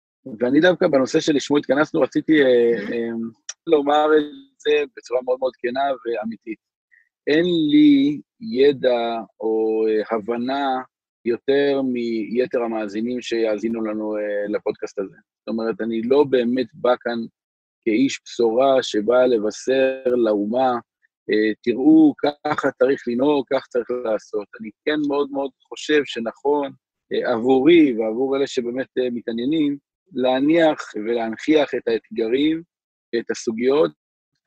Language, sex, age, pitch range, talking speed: Hebrew, male, 50-69, 120-155 Hz, 120 wpm